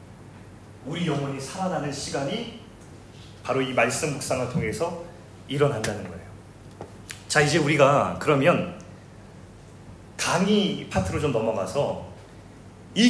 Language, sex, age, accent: Korean, male, 30-49, native